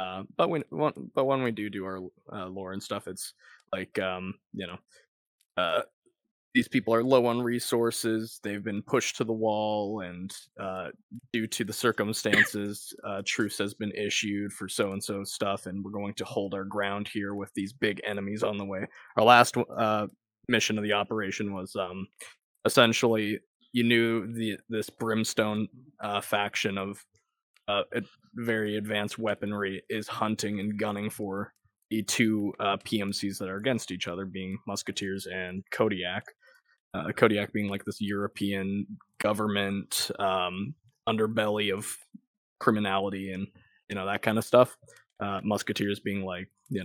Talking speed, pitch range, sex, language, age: 160 wpm, 100-110 Hz, male, English, 20-39